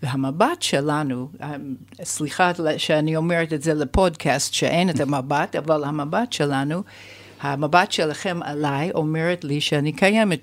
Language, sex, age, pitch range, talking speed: Hebrew, female, 60-79, 135-165 Hz, 120 wpm